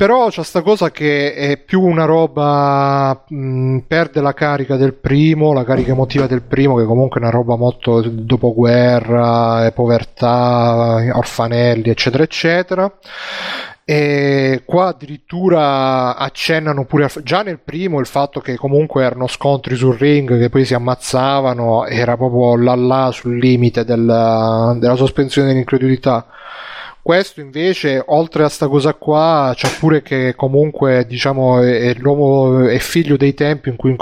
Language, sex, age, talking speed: Italian, male, 30-49, 145 wpm